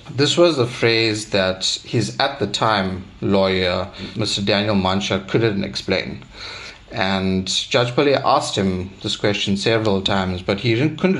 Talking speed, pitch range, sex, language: 145 wpm, 95-115 Hz, male, English